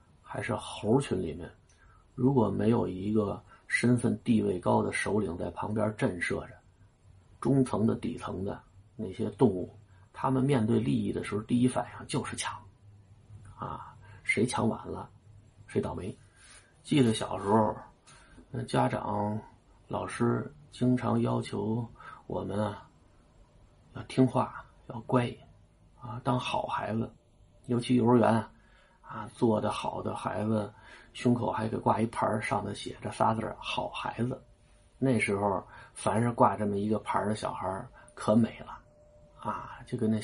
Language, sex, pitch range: Chinese, male, 100-120 Hz